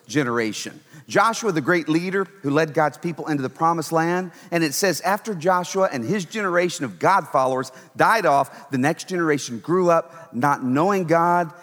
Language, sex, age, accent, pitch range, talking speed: English, male, 40-59, American, 145-205 Hz, 175 wpm